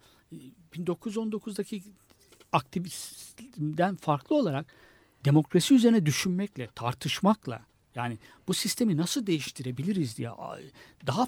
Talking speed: 80 wpm